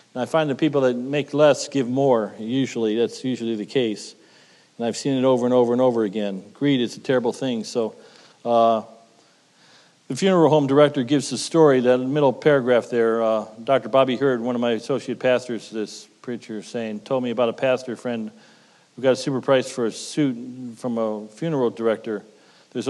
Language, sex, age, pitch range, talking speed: English, male, 40-59, 115-135 Hz, 200 wpm